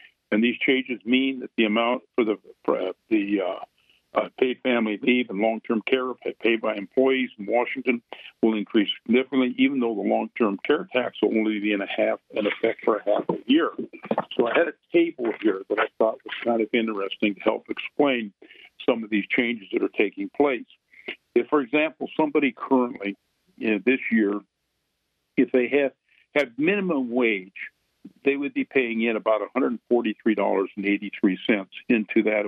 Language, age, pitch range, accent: English, 50-69, 110-130 Hz, American